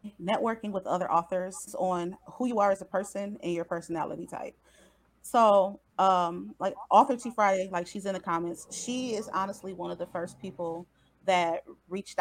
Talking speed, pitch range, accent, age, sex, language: 175 wpm, 165-195 Hz, American, 30-49, female, English